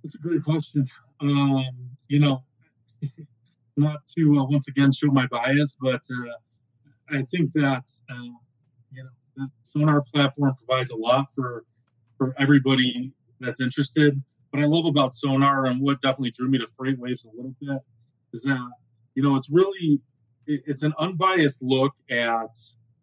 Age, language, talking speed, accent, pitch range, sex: 30-49, English, 160 wpm, American, 120-140 Hz, male